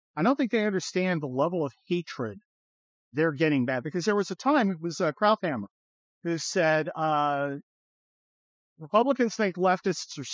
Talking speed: 165 wpm